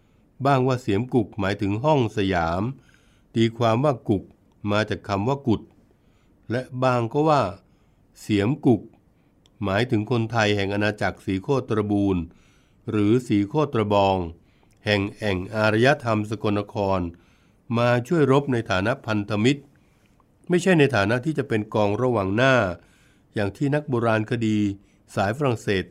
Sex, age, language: male, 60-79, Thai